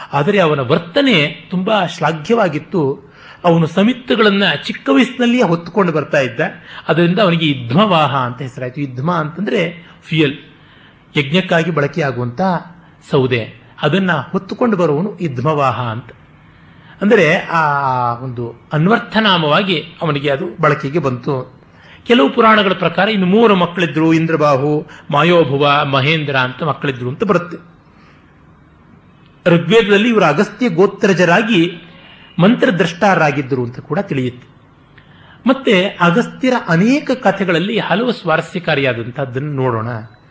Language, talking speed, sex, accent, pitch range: Kannada, 95 wpm, male, native, 145-195 Hz